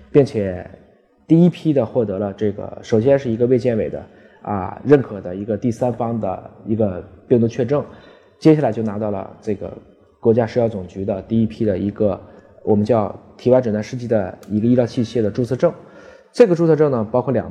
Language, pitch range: Chinese, 105-130 Hz